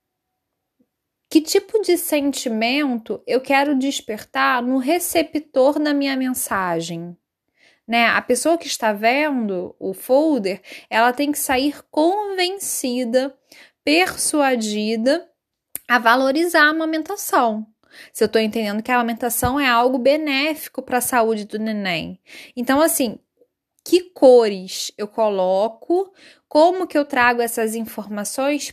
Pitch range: 225-285 Hz